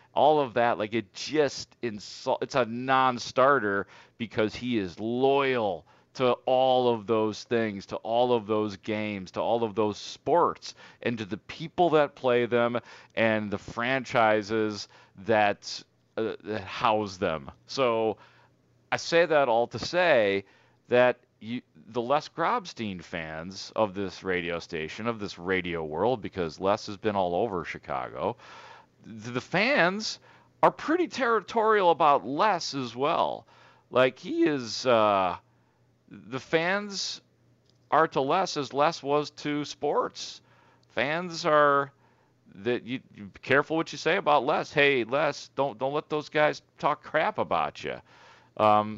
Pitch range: 105-140 Hz